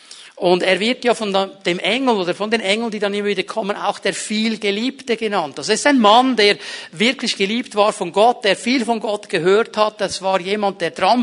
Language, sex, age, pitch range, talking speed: German, male, 50-69, 195-245 Hz, 220 wpm